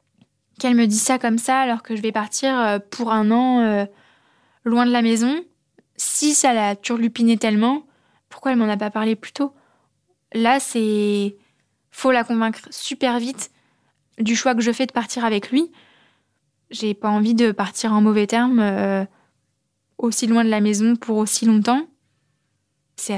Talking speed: 170 wpm